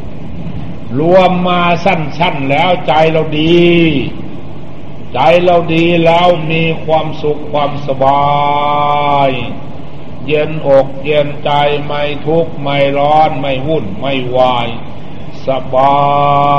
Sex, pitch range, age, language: male, 145-175 Hz, 60-79, Thai